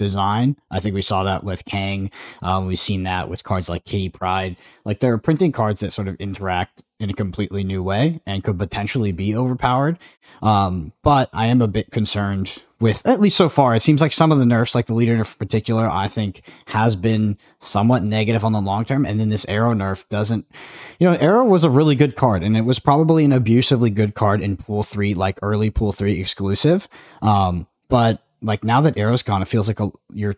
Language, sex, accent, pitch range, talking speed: English, male, American, 100-135 Hz, 220 wpm